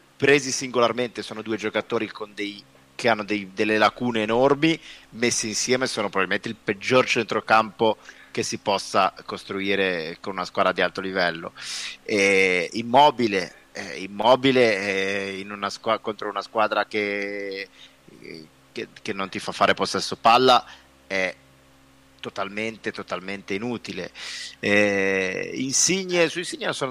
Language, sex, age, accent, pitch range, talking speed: Italian, male, 30-49, native, 95-115 Hz, 115 wpm